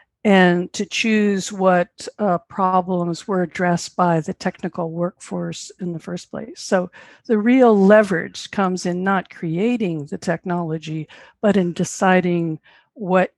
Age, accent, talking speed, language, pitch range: 50-69, American, 135 wpm, English, 180-210 Hz